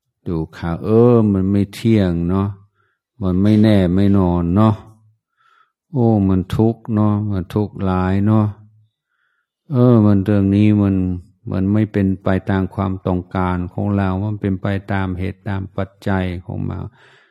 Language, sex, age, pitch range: Thai, male, 60-79, 90-105 Hz